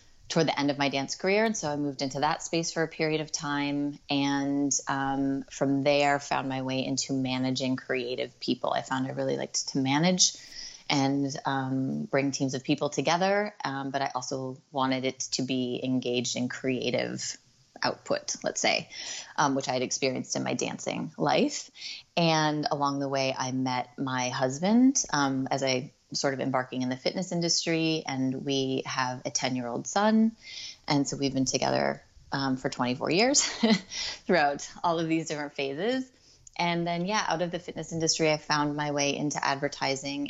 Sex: female